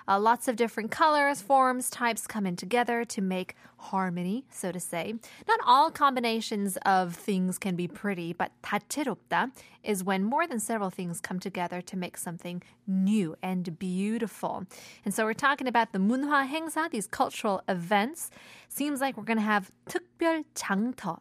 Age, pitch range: 20-39, 185-235 Hz